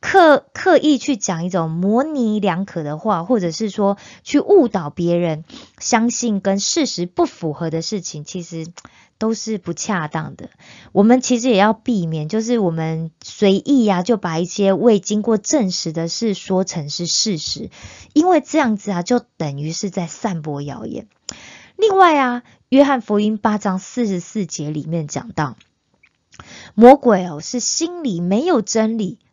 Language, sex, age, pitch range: Korean, female, 20-39, 170-240 Hz